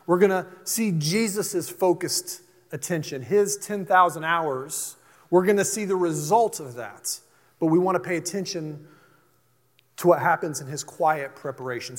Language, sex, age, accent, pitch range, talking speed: English, male, 30-49, American, 165-200 Hz, 155 wpm